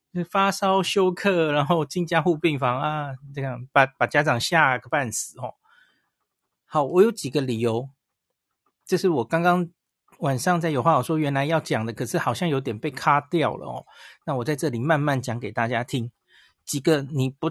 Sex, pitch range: male, 130-170 Hz